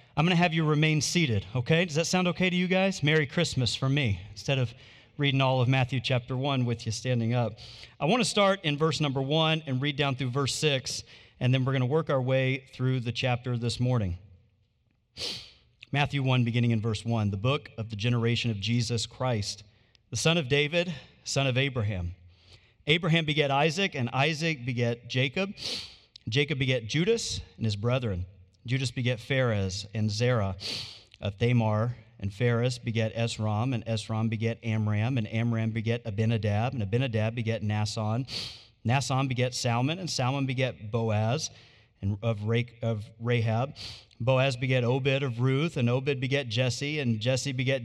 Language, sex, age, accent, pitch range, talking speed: English, male, 40-59, American, 115-140 Hz, 170 wpm